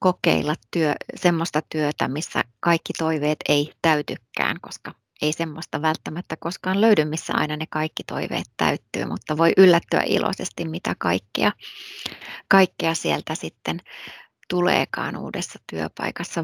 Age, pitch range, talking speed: 30-49, 150-180 Hz, 120 wpm